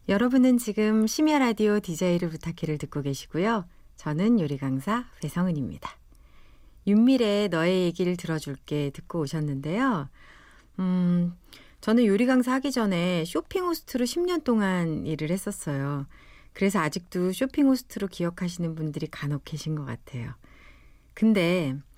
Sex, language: female, Korean